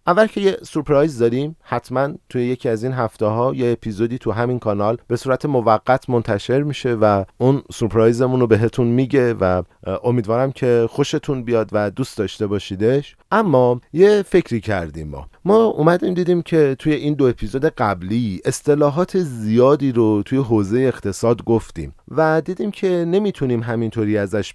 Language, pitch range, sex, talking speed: Persian, 105-145 Hz, male, 155 wpm